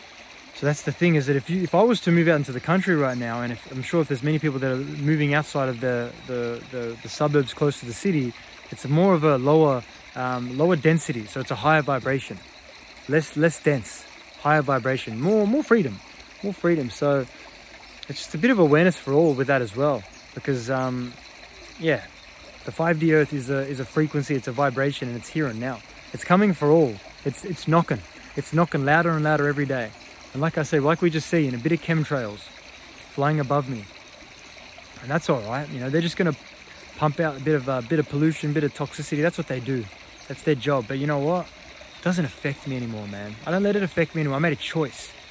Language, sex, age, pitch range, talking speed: English, male, 20-39, 130-165 Hz, 235 wpm